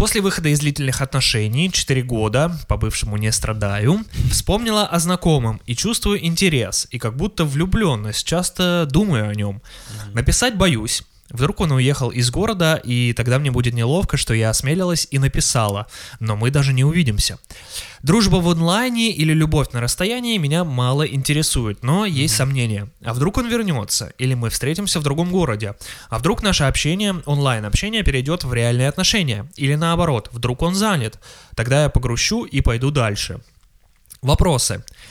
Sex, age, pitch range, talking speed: male, 20-39, 115-160 Hz, 155 wpm